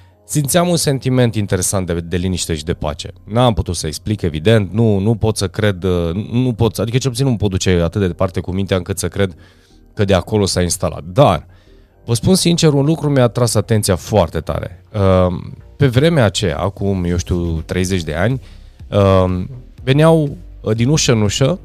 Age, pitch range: 20-39, 90-120 Hz